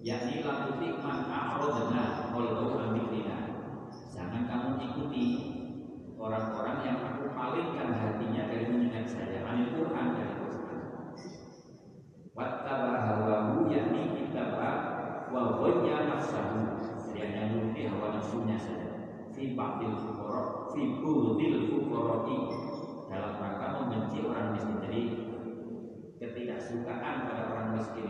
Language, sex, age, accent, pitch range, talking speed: Indonesian, male, 40-59, native, 110-120 Hz, 110 wpm